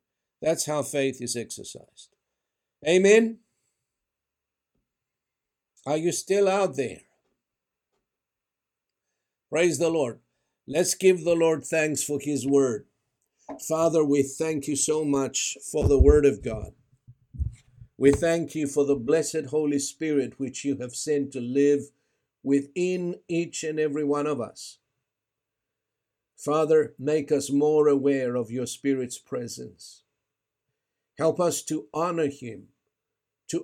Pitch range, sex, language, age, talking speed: 125-155 Hz, male, English, 60-79, 125 wpm